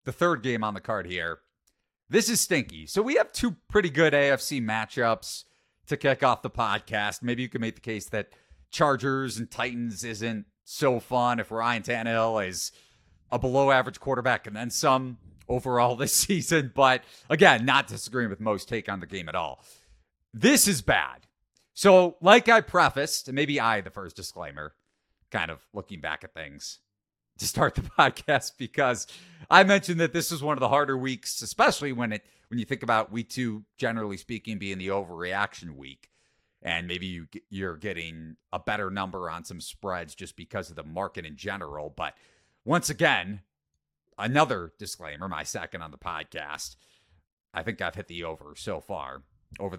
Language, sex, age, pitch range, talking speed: English, male, 40-59, 95-135 Hz, 180 wpm